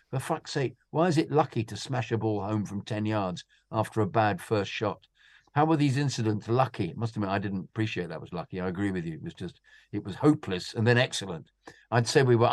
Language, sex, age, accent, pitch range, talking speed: English, male, 50-69, British, 100-120 Hz, 250 wpm